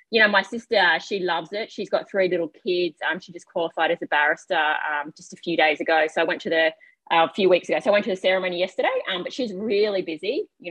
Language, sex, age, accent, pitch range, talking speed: English, female, 30-49, Australian, 160-195 Hz, 270 wpm